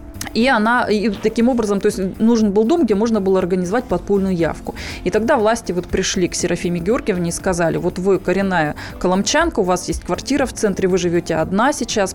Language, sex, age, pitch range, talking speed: Russian, female, 20-39, 170-215 Hz, 200 wpm